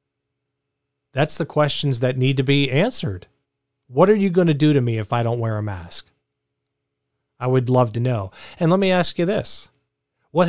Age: 40-59